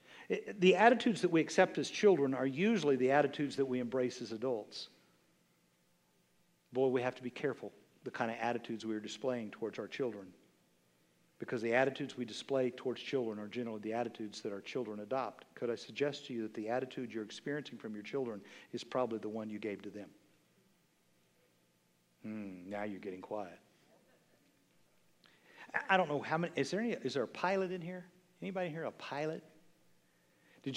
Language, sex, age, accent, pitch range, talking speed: English, male, 50-69, American, 120-160 Hz, 180 wpm